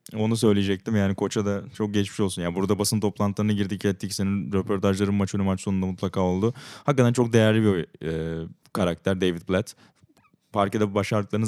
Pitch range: 95-110 Hz